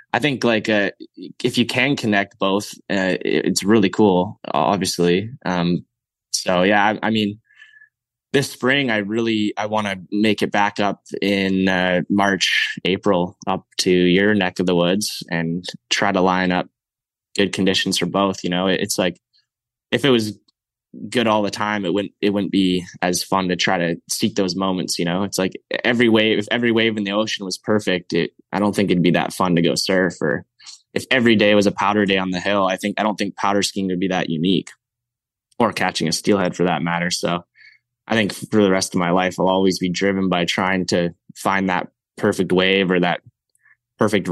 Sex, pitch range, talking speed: male, 90-105 Hz, 205 wpm